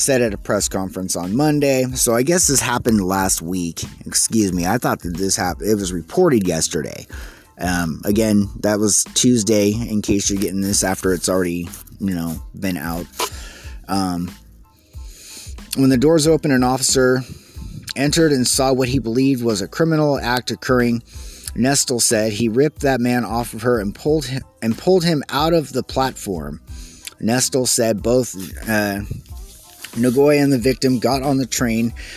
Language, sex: English, male